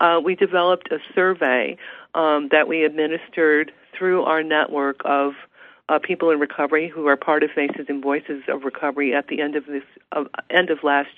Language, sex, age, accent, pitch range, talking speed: English, female, 50-69, American, 150-170 Hz, 190 wpm